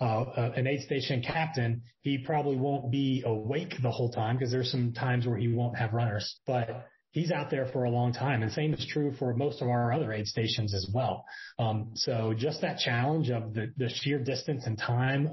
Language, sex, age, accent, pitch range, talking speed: English, male, 30-49, American, 120-140 Hz, 215 wpm